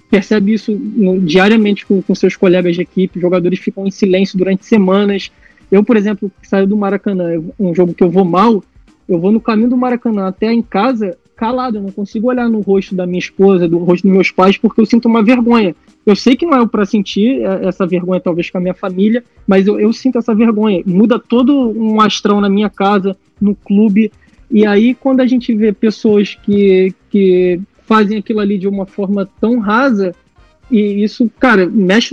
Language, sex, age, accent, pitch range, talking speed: Portuguese, male, 20-39, Brazilian, 190-225 Hz, 205 wpm